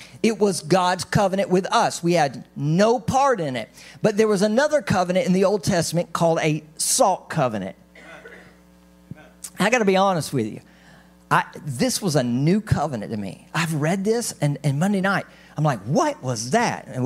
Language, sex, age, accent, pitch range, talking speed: English, male, 40-59, American, 150-210 Hz, 185 wpm